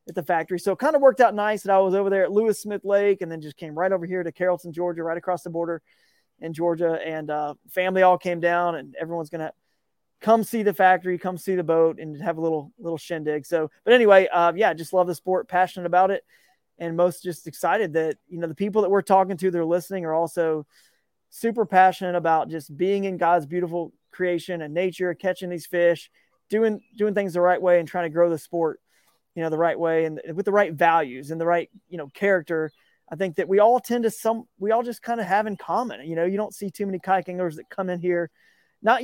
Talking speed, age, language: 245 wpm, 20-39, English